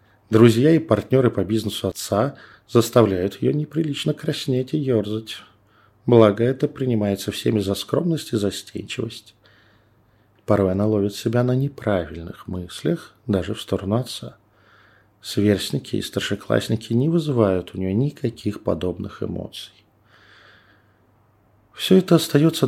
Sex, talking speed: male, 115 wpm